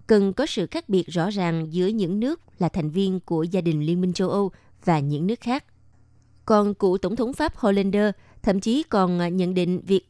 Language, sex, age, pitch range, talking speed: Vietnamese, female, 20-39, 165-215 Hz, 215 wpm